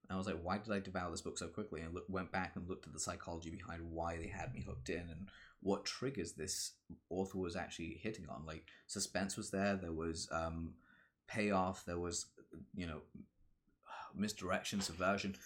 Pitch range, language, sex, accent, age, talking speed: 85-100 Hz, English, male, British, 20-39, 200 wpm